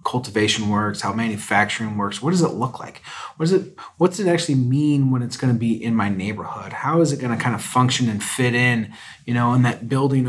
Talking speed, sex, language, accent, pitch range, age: 240 wpm, male, English, American, 110-130 Hz, 30-49